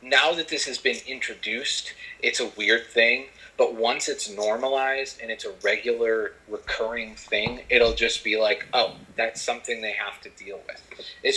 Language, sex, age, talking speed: English, male, 30-49, 175 wpm